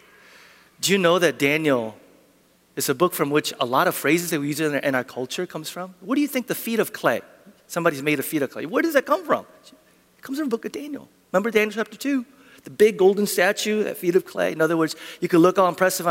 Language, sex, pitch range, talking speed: English, male, 150-225 Hz, 255 wpm